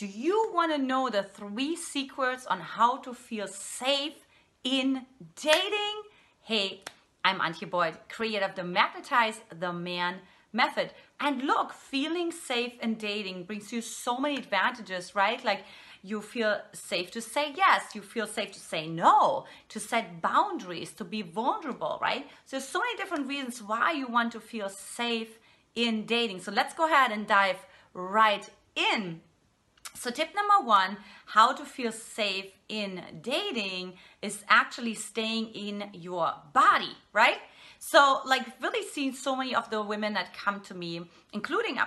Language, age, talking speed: English, 30-49, 155 wpm